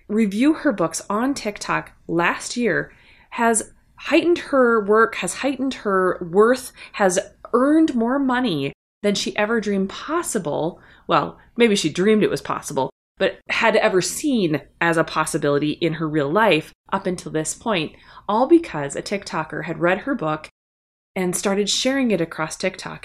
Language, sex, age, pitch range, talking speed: English, female, 20-39, 165-235 Hz, 155 wpm